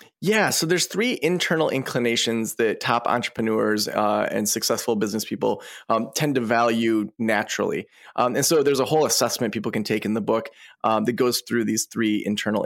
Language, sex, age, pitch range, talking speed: English, male, 20-39, 110-150 Hz, 185 wpm